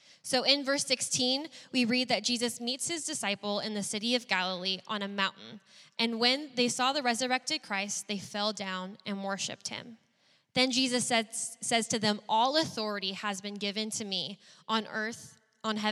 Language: English